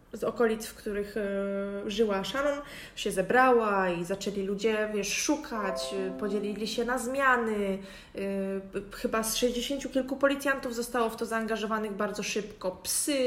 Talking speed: 150 wpm